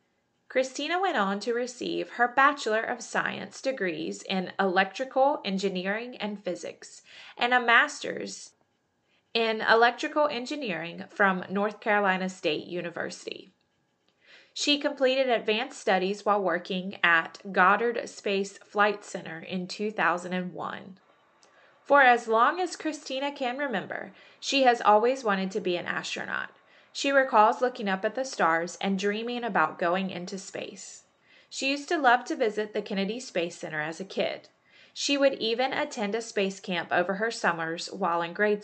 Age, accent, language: 20-39, American, English